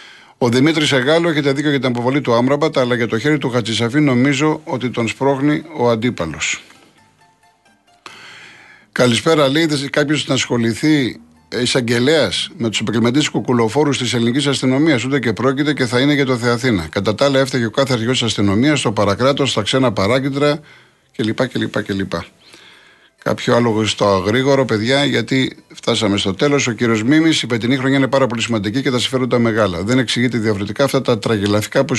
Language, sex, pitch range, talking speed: Greek, male, 105-135 Hz, 175 wpm